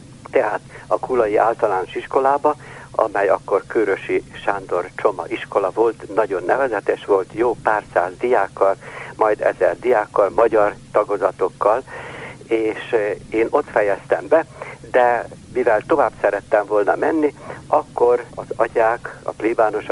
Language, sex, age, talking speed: Hungarian, male, 60-79, 120 wpm